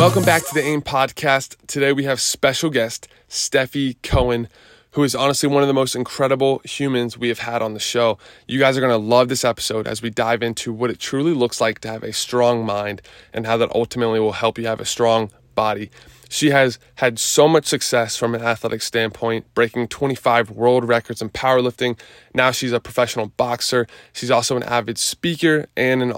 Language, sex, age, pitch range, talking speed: English, male, 20-39, 115-130 Hz, 205 wpm